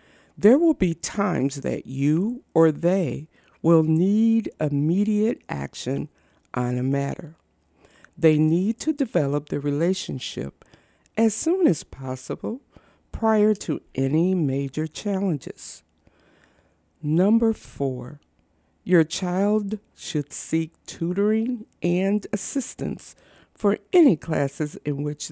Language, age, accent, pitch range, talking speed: English, 60-79, American, 140-205 Hz, 105 wpm